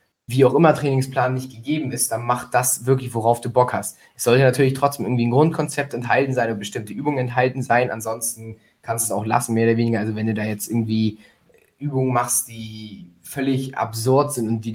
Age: 20-39